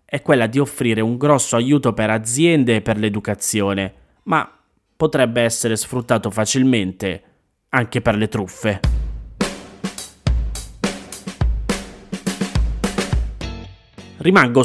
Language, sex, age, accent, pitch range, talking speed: Italian, male, 30-49, native, 105-130 Hz, 90 wpm